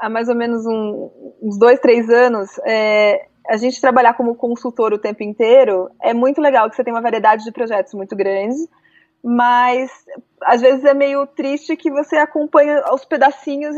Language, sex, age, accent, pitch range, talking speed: Portuguese, female, 20-39, Brazilian, 230-285 Hz, 180 wpm